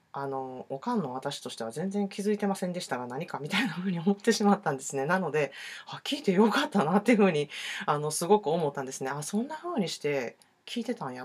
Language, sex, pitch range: Japanese, female, 145-220 Hz